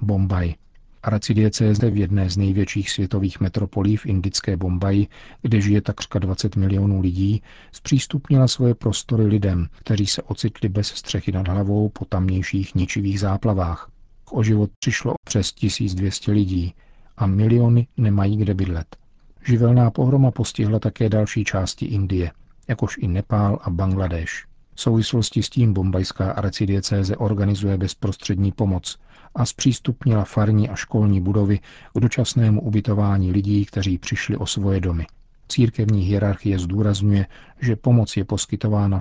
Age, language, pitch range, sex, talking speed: 40-59, Czech, 95-115 Hz, male, 135 wpm